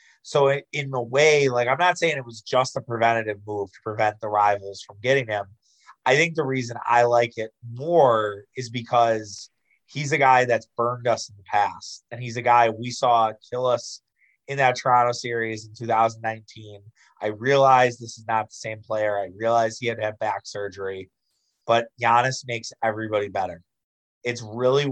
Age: 30-49